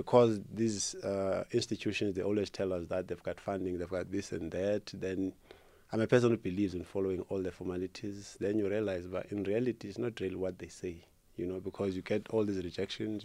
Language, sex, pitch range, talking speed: English, male, 90-105 Hz, 220 wpm